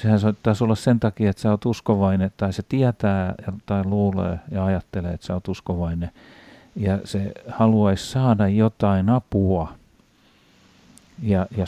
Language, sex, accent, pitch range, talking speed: Finnish, male, native, 95-115 Hz, 140 wpm